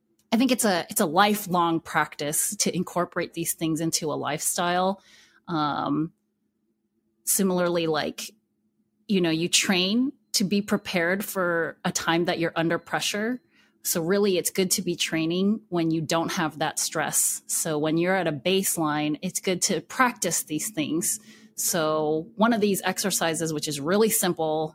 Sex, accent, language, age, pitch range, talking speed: female, American, English, 30-49, 160-205 Hz, 160 wpm